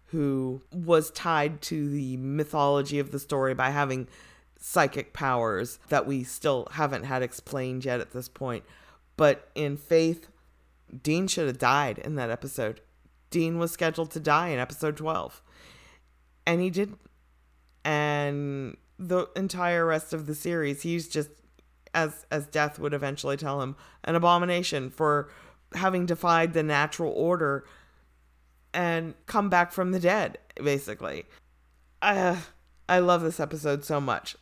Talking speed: 145 wpm